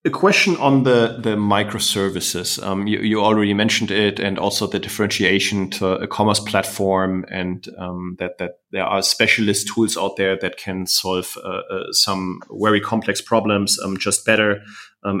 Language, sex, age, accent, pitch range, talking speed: English, male, 30-49, German, 100-130 Hz, 170 wpm